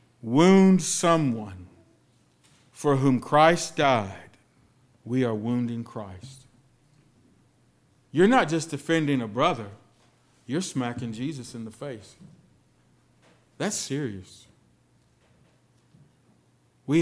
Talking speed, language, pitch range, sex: 90 wpm, English, 120-150 Hz, male